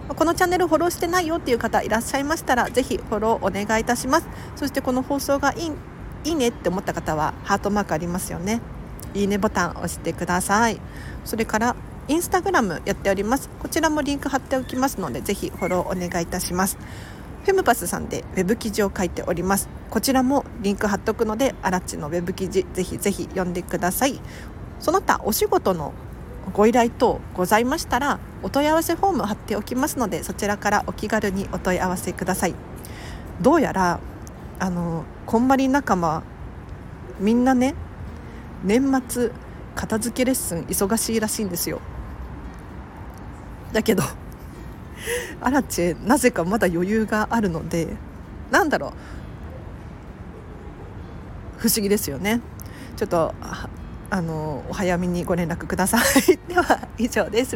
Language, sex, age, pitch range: Japanese, female, 40-59, 180-260 Hz